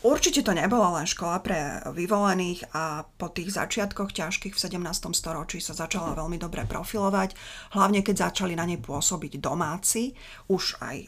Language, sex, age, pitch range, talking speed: Slovak, female, 30-49, 160-190 Hz, 155 wpm